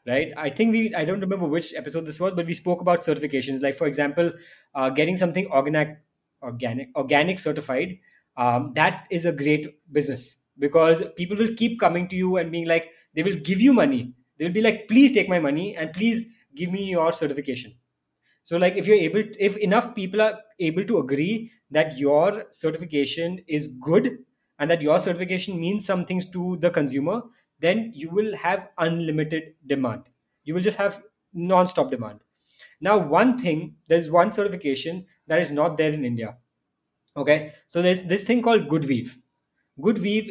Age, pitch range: 20-39, 150-195 Hz